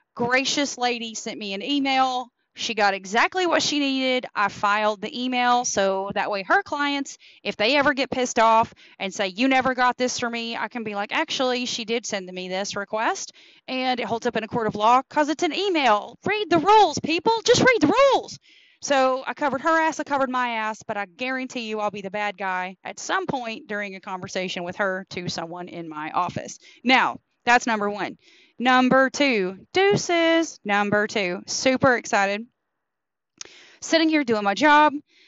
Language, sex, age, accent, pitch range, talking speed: English, female, 30-49, American, 205-265 Hz, 195 wpm